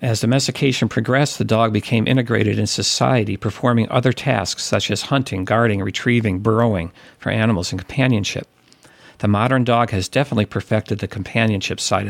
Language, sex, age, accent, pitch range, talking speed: English, male, 50-69, American, 100-125 Hz, 155 wpm